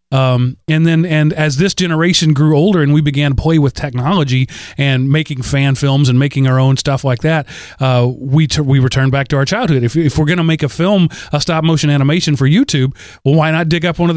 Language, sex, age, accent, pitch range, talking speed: English, male, 40-59, American, 120-155 Hz, 240 wpm